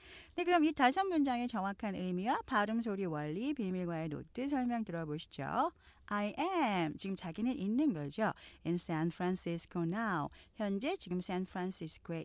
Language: Korean